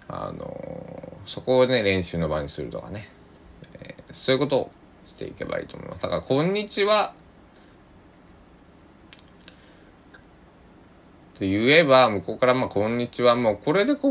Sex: male